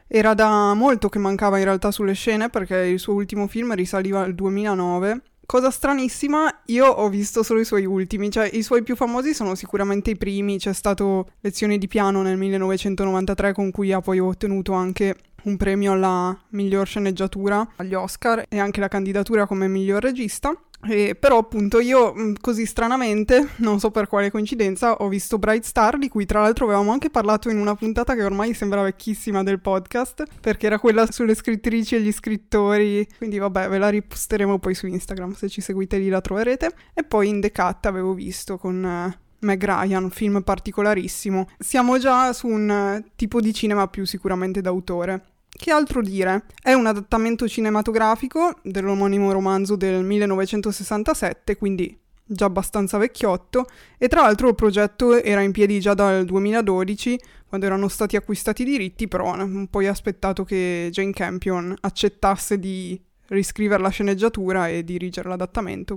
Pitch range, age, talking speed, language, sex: 195-225 Hz, 20-39, 170 wpm, Italian, female